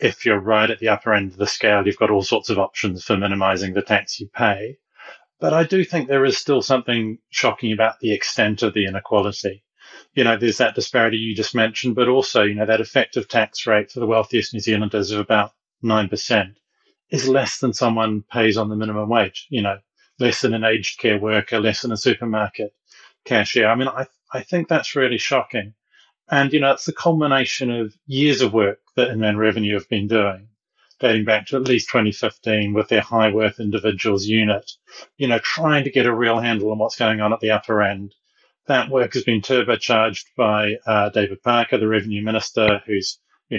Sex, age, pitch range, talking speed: male, 30-49, 105-120 Hz, 205 wpm